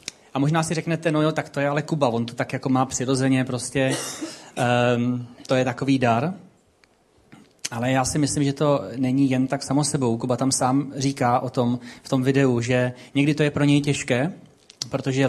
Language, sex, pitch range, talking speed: Czech, male, 120-150 Hz, 195 wpm